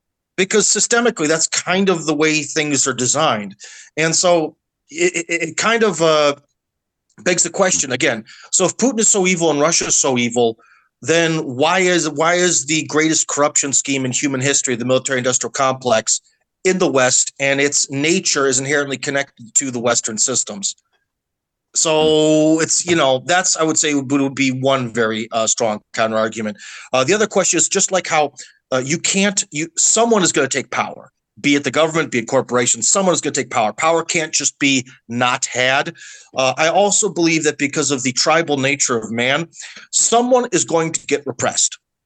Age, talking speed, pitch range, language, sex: 30-49, 190 wpm, 130-170 Hz, English, male